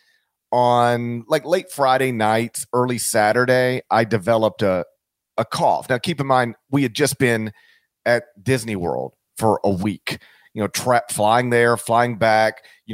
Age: 40-59